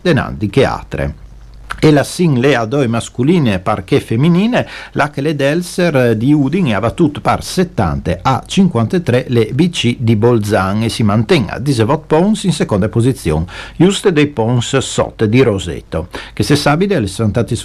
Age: 50-69